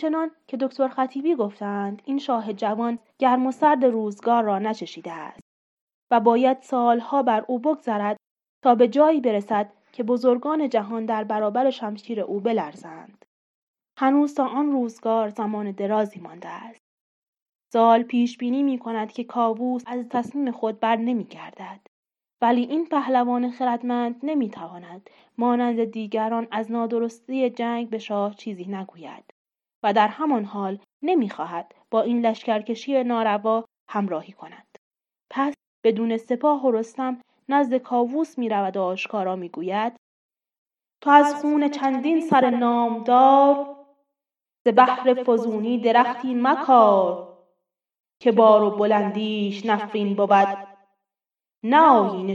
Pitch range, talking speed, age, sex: 210-255 Hz, 125 wpm, 30-49, female